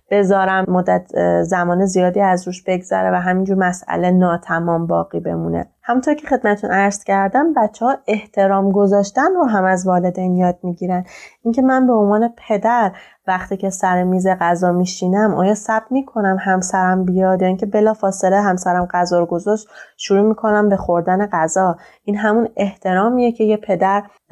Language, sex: Persian, female